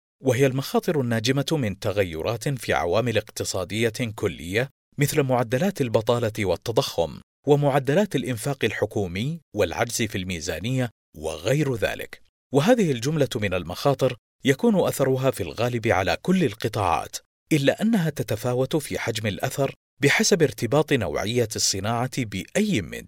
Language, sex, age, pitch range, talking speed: Arabic, male, 40-59, 110-145 Hz, 115 wpm